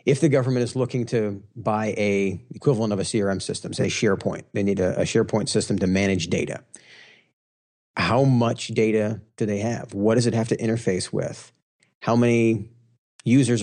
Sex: male